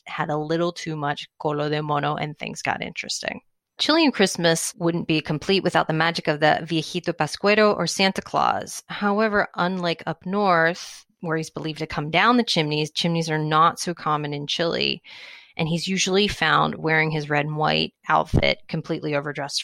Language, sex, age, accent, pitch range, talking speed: English, female, 30-49, American, 155-185 Hz, 175 wpm